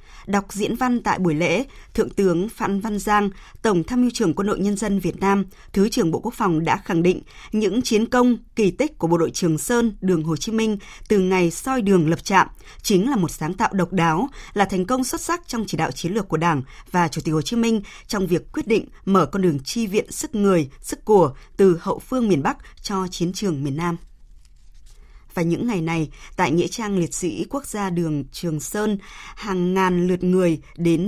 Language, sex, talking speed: Vietnamese, female, 225 wpm